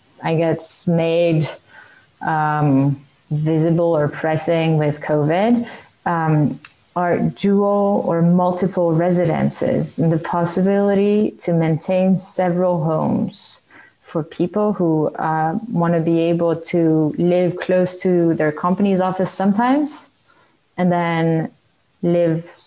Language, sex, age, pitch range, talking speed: English, female, 20-39, 160-195 Hz, 105 wpm